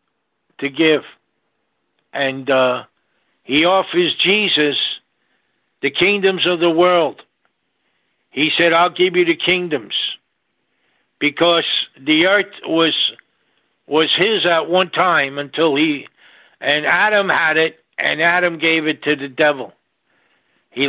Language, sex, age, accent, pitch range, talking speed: English, male, 60-79, American, 155-185 Hz, 120 wpm